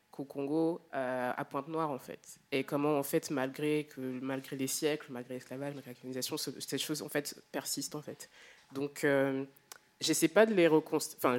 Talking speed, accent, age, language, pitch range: 195 wpm, French, 20-39, French, 130-155 Hz